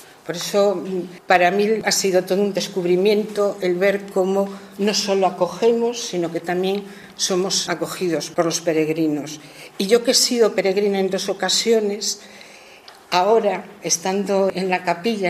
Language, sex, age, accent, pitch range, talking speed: Spanish, female, 50-69, Spanish, 175-210 Hz, 145 wpm